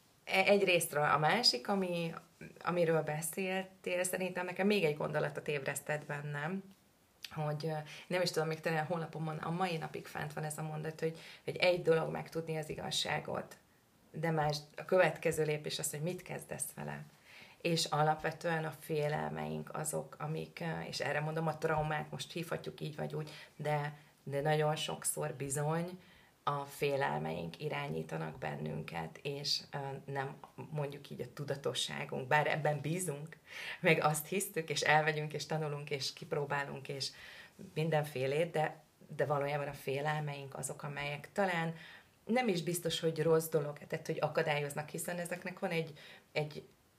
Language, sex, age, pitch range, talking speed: Hungarian, female, 30-49, 145-170 Hz, 145 wpm